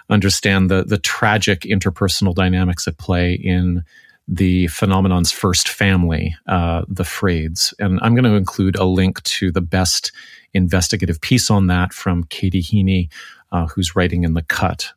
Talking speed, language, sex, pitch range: 155 wpm, English, male, 90-100 Hz